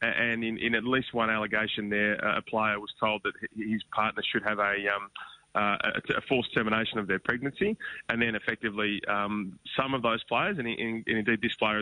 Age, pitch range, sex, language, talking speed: 20-39, 105-115 Hz, male, English, 190 wpm